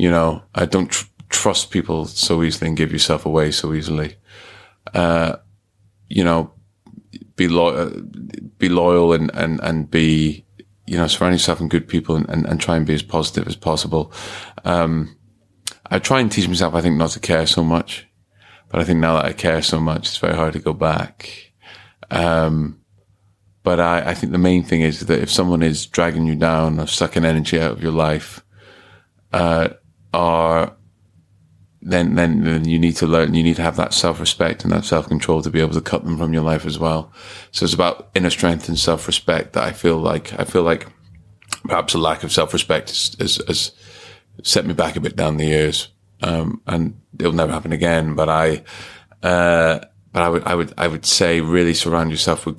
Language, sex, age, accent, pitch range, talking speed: English, male, 30-49, British, 80-90 Hz, 195 wpm